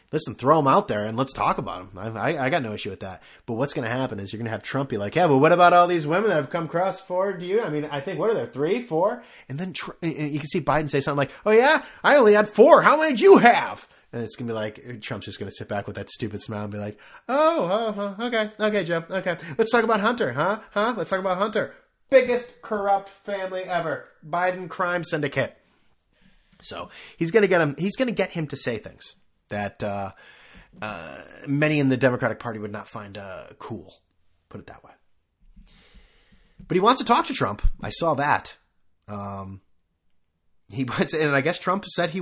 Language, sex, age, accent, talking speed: English, male, 30-49, American, 235 wpm